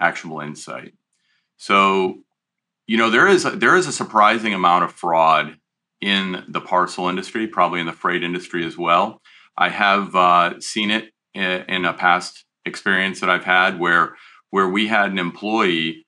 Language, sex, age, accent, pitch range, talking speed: English, male, 40-59, American, 90-110 Hz, 165 wpm